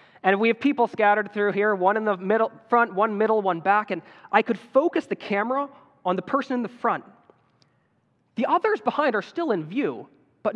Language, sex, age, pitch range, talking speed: English, male, 20-39, 185-250 Hz, 205 wpm